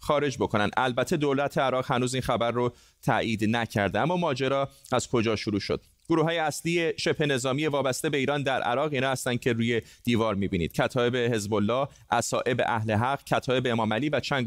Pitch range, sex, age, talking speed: 115-145 Hz, male, 30-49, 180 wpm